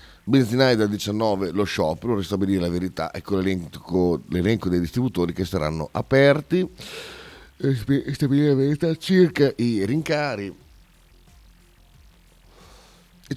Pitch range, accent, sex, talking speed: 80-110 Hz, native, male, 100 wpm